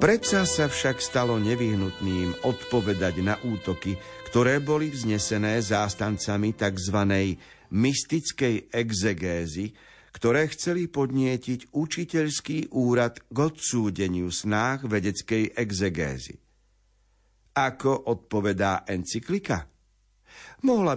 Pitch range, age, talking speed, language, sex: 100-130 Hz, 50-69, 85 wpm, Slovak, male